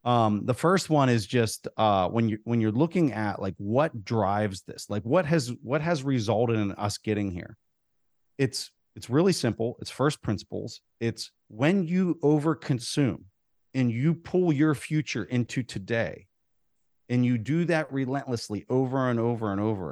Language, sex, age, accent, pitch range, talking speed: English, male, 40-59, American, 110-140 Hz, 165 wpm